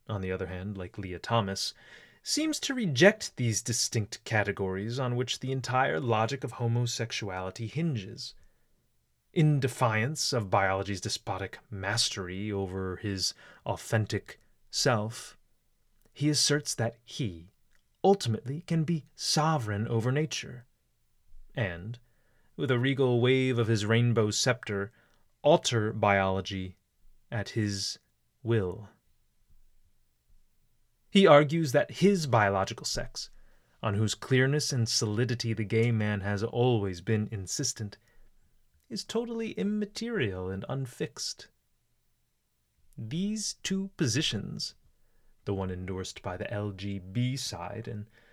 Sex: male